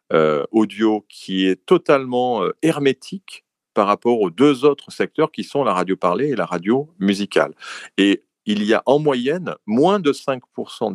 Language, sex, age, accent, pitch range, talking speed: French, male, 40-59, French, 90-145 Hz, 170 wpm